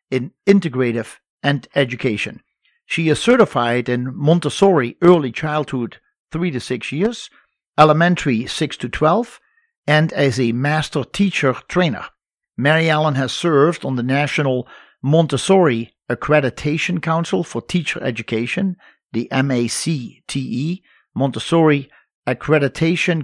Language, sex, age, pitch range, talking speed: English, male, 50-69, 130-175 Hz, 110 wpm